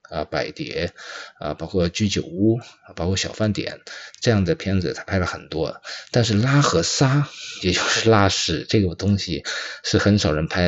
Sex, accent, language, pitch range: male, native, Chinese, 95-120 Hz